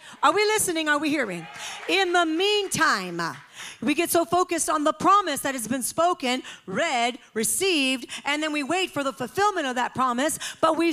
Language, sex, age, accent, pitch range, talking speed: English, female, 40-59, American, 255-335 Hz, 185 wpm